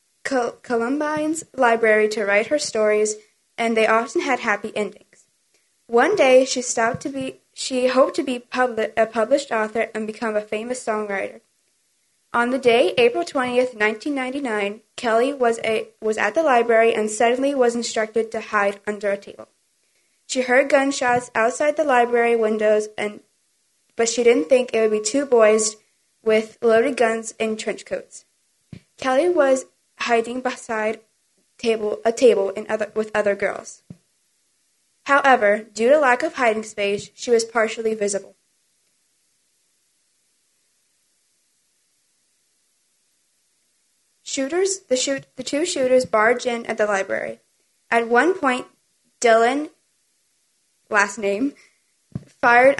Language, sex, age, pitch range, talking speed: English, female, 20-39, 215-255 Hz, 135 wpm